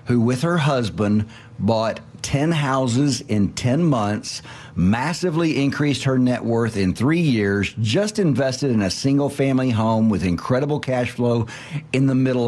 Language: English